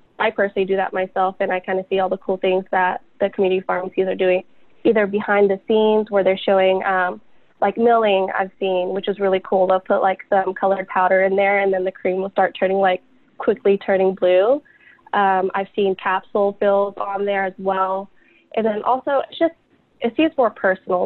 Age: 20-39